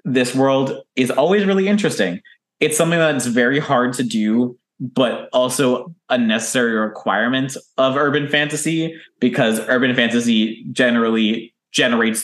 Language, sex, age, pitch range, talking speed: English, male, 20-39, 120-200 Hz, 125 wpm